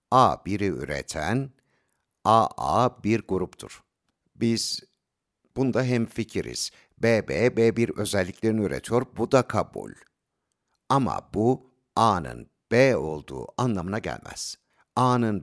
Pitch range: 90-115 Hz